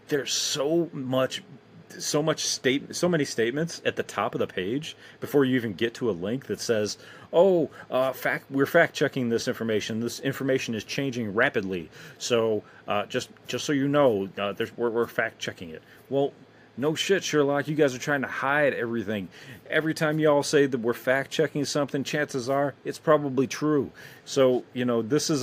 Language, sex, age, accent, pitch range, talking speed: English, male, 40-59, American, 110-150 Hz, 195 wpm